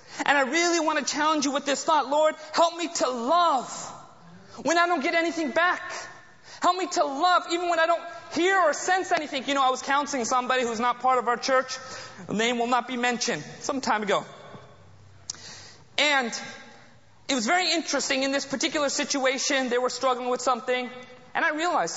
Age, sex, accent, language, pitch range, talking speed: 30-49, male, American, English, 230-300 Hz, 195 wpm